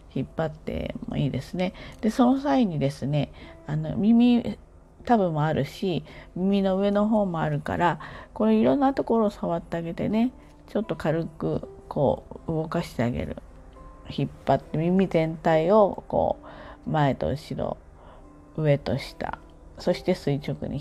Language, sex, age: Japanese, female, 40-59